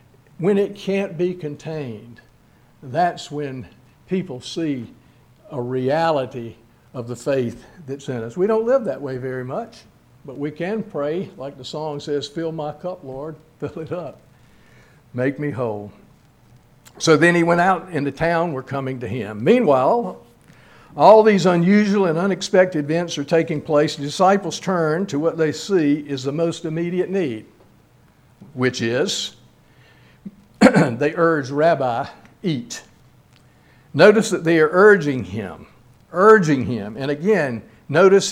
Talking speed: 145 wpm